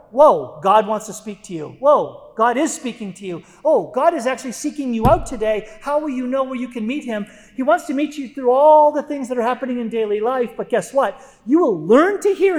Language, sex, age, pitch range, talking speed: English, male, 40-59, 190-255 Hz, 255 wpm